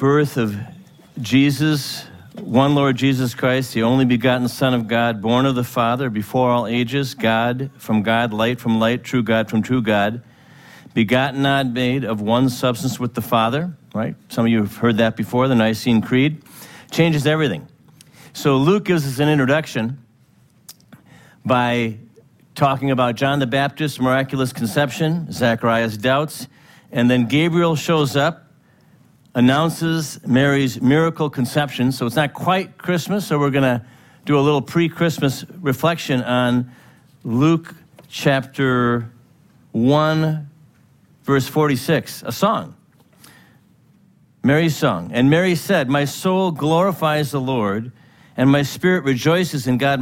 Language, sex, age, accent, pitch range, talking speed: English, male, 50-69, American, 125-155 Hz, 140 wpm